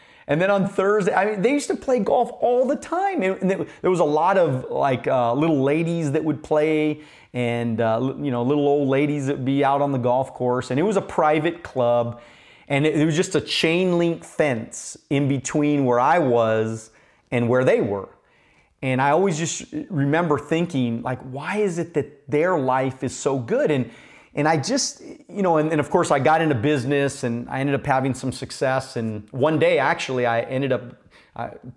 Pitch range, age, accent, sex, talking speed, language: 120-150 Hz, 30-49, American, male, 205 wpm, English